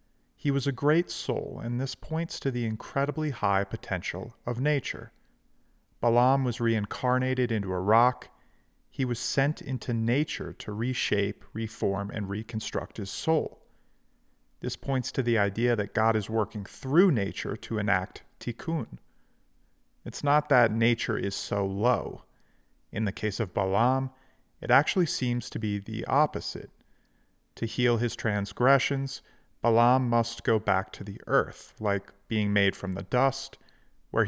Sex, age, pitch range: male, 40-59, 105-135 Hz